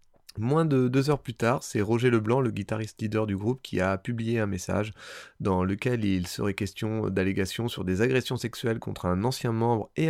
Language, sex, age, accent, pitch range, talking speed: French, male, 30-49, French, 95-120 Hz, 200 wpm